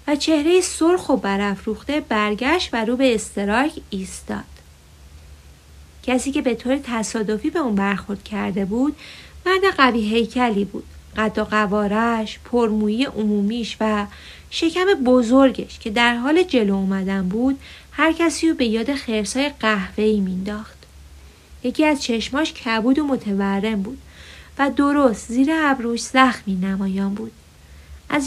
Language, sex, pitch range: Persian, female, 200-275 Hz